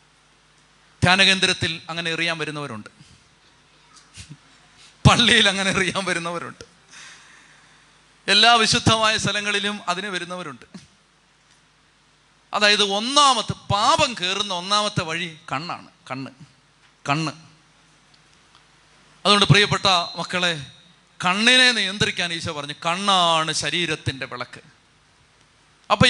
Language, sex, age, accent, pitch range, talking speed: Malayalam, male, 30-49, native, 160-200 Hz, 75 wpm